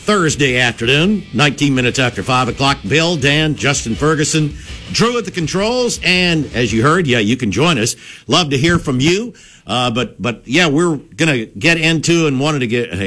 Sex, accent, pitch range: male, American, 100-140 Hz